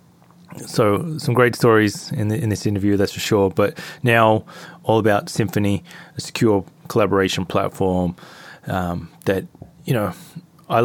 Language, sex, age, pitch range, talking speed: English, male, 20-39, 100-130 Hz, 145 wpm